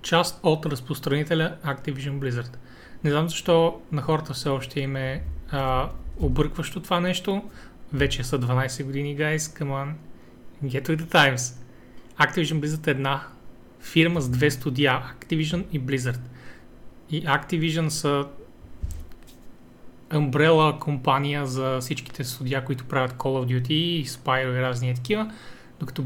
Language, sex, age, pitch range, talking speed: Bulgarian, male, 30-49, 130-155 Hz, 140 wpm